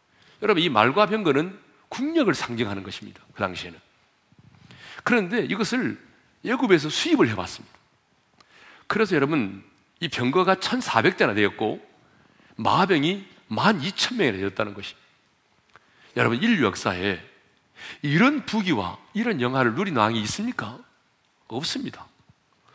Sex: male